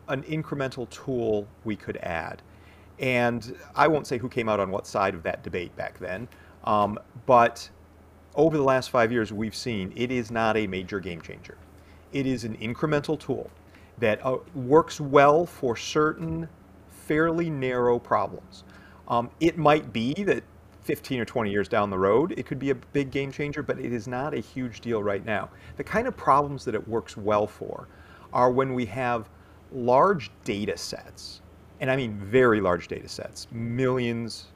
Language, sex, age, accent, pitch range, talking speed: English, male, 40-59, American, 100-130 Hz, 175 wpm